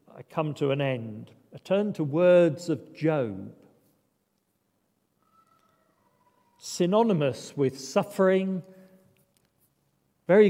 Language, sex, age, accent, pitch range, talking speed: English, male, 50-69, British, 130-175 Hz, 85 wpm